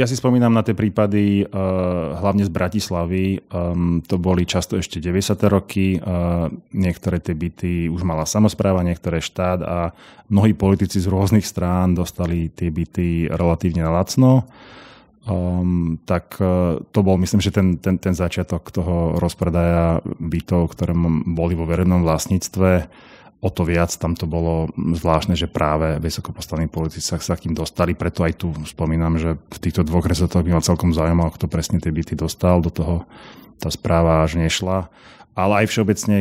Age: 30-49